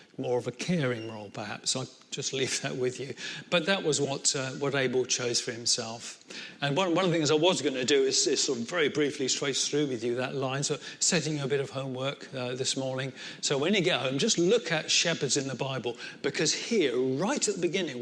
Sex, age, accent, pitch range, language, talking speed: male, 40-59, British, 130-165 Hz, English, 240 wpm